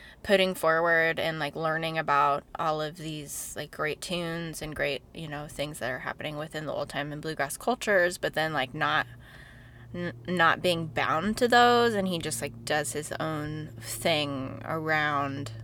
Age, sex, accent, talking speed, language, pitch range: 20-39, female, American, 175 wpm, English, 145-185 Hz